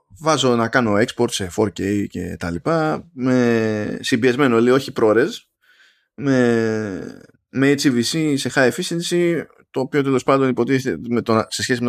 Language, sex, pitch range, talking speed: Greek, male, 110-170 Hz, 150 wpm